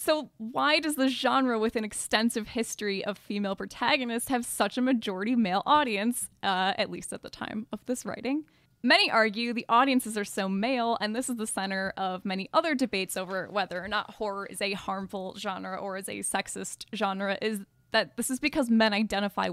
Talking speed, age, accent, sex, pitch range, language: 195 wpm, 10-29, American, female, 200-235 Hz, English